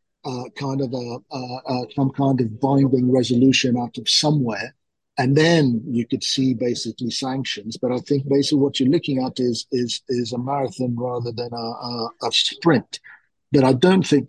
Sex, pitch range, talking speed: male, 125-140 Hz, 185 wpm